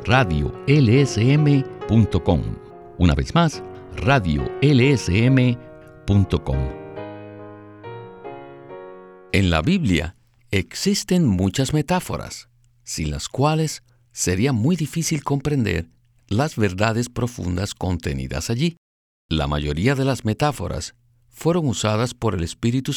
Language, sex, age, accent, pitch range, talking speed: Spanish, male, 60-79, Mexican, 90-130 Hz, 85 wpm